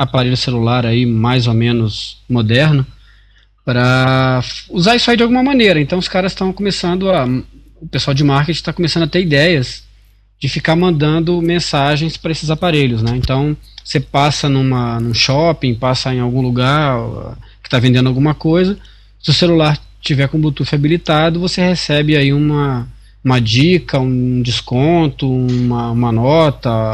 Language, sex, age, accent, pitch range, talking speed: Portuguese, male, 20-39, Brazilian, 125-165 Hz, 160 wpm